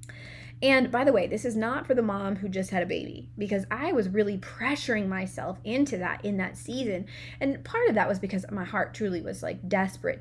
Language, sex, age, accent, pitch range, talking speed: English, female, 20-39, American, 175-210 Hz, 225 wpm